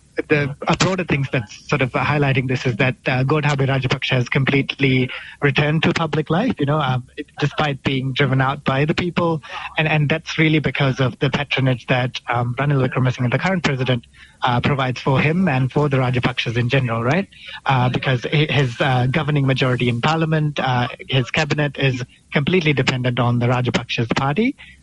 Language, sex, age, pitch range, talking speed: English, male, 30-49, 125-150 Hz, 180 wpm